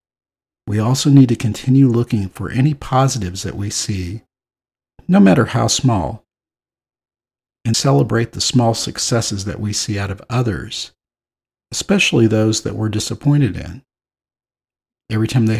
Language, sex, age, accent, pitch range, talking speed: English, male, 50-69, American, 90-125 Hz, 140 wpm